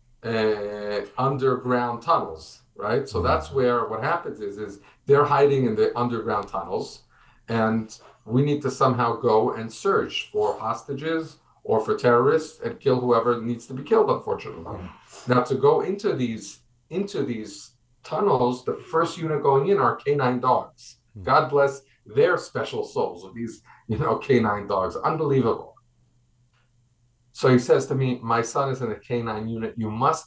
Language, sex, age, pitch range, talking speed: English, male, 40-59, 120-170 Hz, 160 wpm